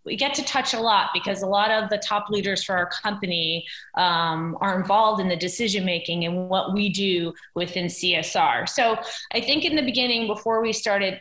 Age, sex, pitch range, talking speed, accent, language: 30-49, female, 195-255 Hz, 200 wpm, American, English